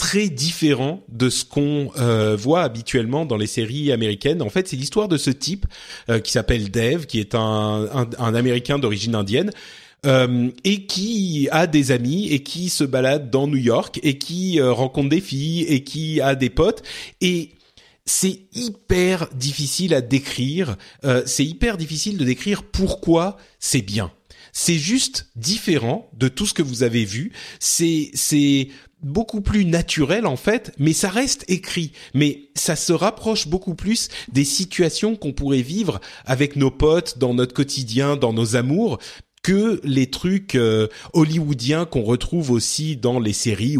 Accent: French